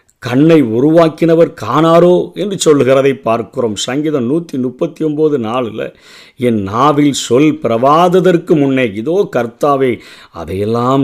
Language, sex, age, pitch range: Tamil, male, 50-69, 120-150 Hz